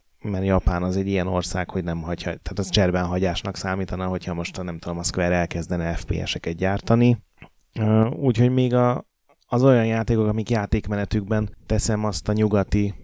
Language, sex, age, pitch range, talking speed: Hungarian, male, 30-49, 90-110 Hz, 155 wpm